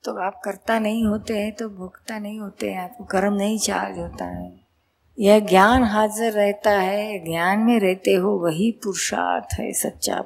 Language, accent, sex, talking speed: Gujarati, native, female, 140 wpm